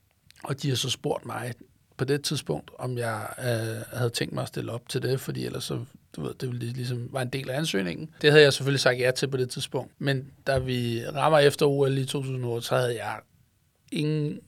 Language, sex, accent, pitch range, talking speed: Danish, male, native, 125-150 Hz, 230 wpm